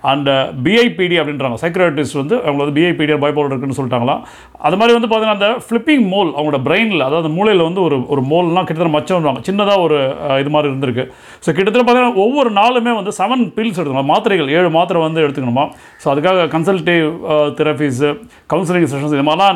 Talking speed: 165 wpm